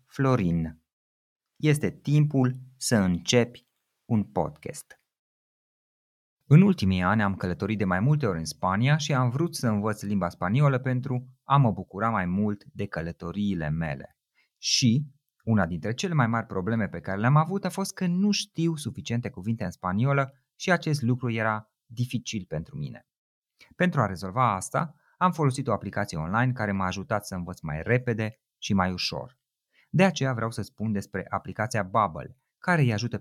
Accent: native